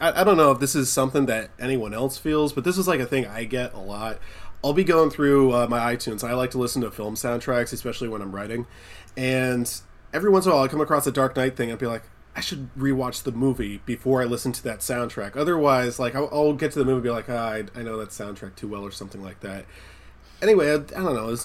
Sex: male